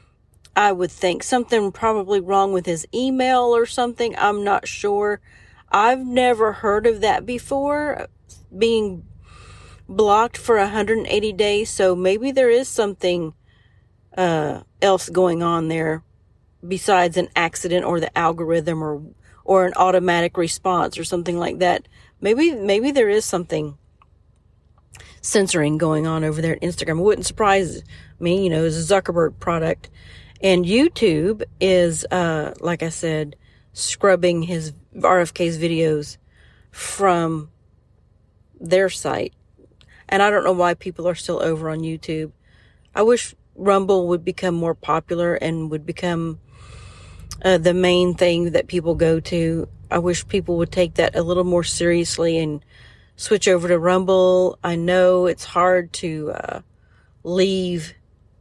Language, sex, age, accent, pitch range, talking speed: English, female, 40-59, American, 160-195 Hz, 140 wpm